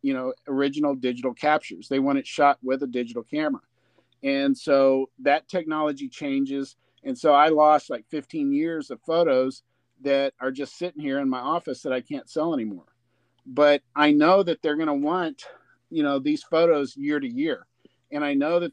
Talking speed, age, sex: 190 wpm, 50-69, male